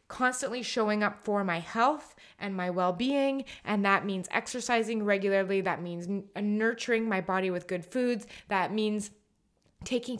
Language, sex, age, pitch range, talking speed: English, female, 20-39, 195-245 Hz, 145 wpm